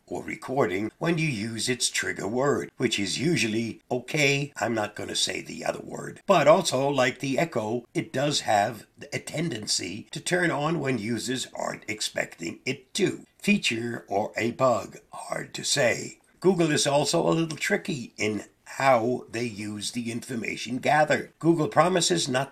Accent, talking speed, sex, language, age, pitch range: American, 165 wpm, male, English, 60-79, 115-155 Hz